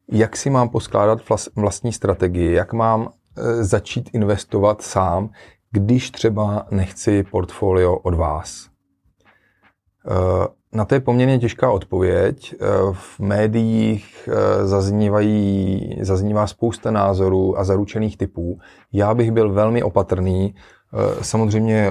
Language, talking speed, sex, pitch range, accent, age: Czech, 100 wpm, male, 95-110 Hz, native, 30-49